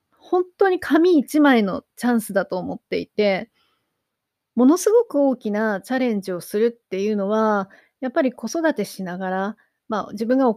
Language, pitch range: Japanese, 200-275 Hz